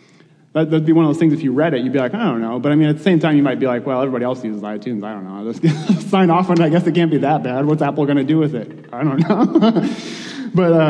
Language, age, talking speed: English, 30-49, 325 wpm